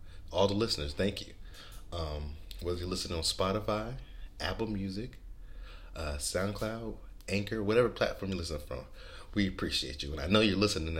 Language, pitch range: English, 75-100 Hz